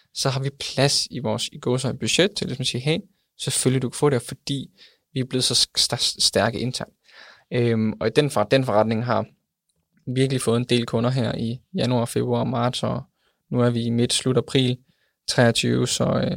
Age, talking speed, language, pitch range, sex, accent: 20-39, 200 wpm, Danish, 115-135 Hz, male, native